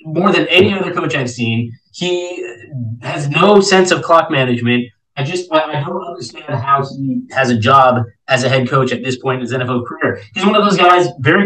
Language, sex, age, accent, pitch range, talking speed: English, male, 20-39, American, 120-150 Hz, 215 wpm